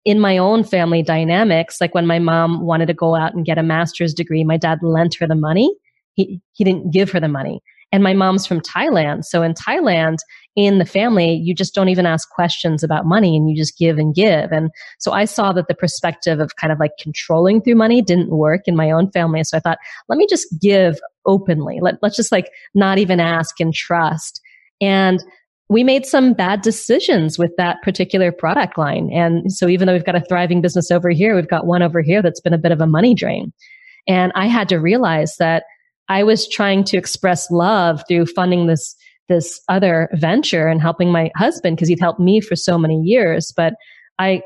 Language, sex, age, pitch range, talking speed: English, female, 30-49, 165-195 Hz, 215 wpm